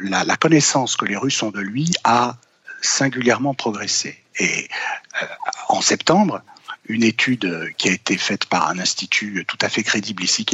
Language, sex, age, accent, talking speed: French, male, 60-79, French, 175 wpm